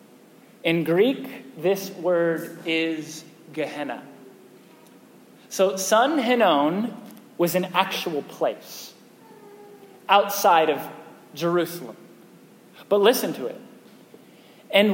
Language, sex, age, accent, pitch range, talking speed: English, male, 30-49, American, 170-210 Hz, 85 wpm